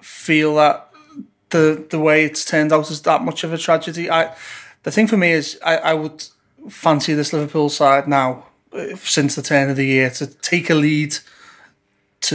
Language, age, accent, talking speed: English, 30-49, British, 190 wpm